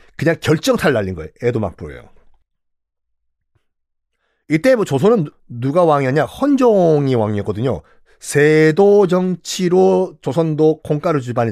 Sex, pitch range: male, 115-190 Hz